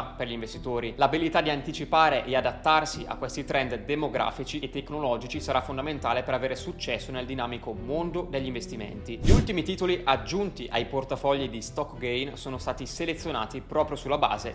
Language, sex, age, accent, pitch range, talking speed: Italian, male, 20-39, native, 125-145 Hz, 160 wpm